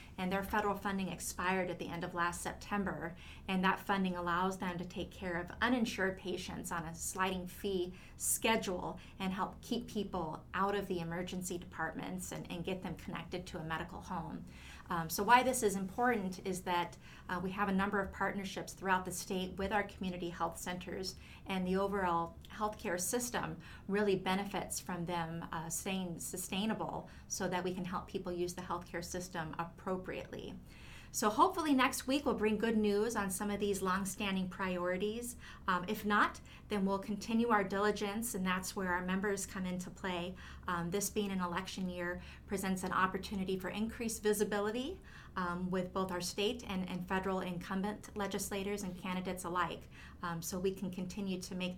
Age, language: 30-49, English